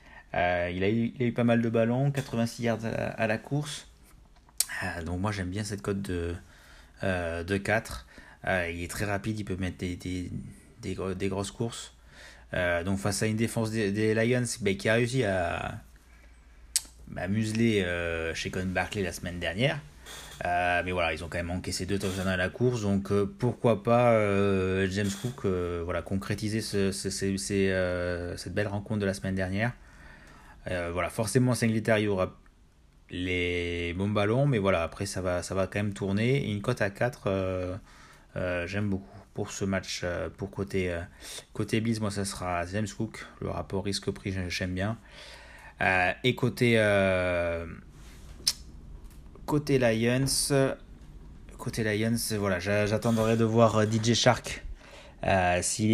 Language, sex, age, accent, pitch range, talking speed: French, male, 30-49, French, 90-110 Hz, 175 wpm